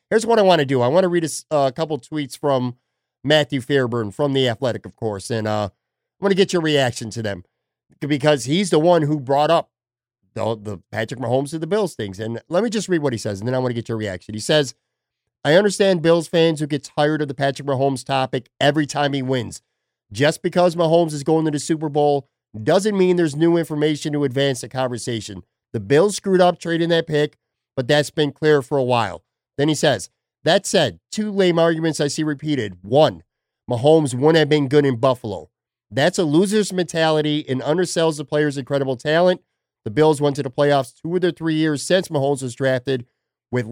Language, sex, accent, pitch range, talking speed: English, male, American, 125-160 Hz, 215 wpm